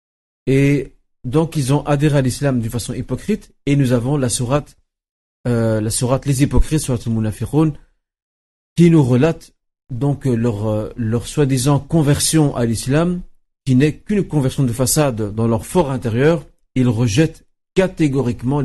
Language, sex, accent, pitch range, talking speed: French, male, French, 115-150 Hz, 140 wpm